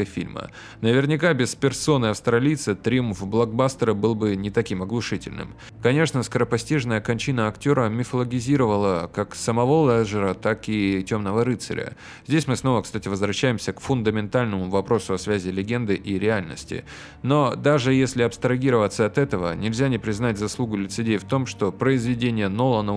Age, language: 20-39, Russian